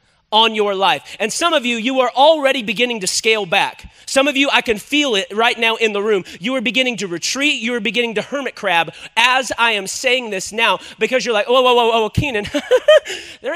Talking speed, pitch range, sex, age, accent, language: 245 wpm, 210-270 Hz, male, 30-49, American, English